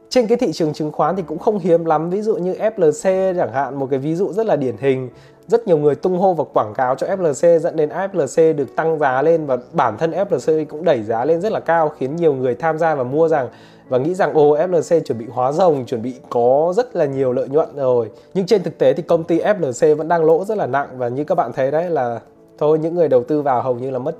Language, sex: Vietnamese, male